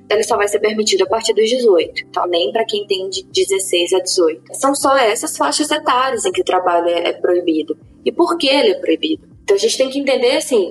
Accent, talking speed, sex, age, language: Brazilian, 235 wpm, female, 20-39, Portuguese